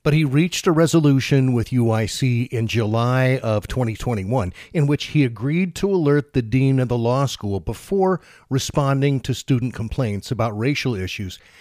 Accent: American